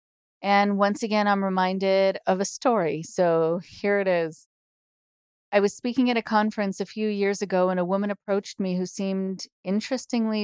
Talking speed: 170 wpm